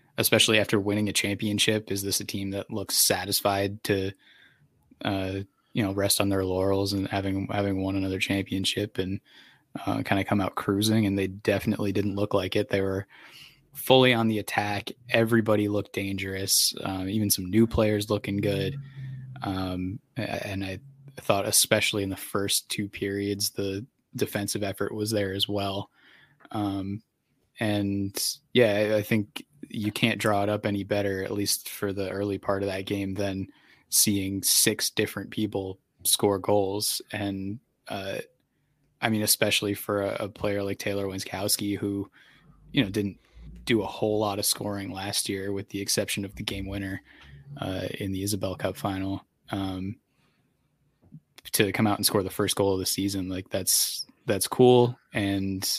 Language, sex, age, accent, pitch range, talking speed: English, male, 20-39, American, 95-105 Hz, 165 wpm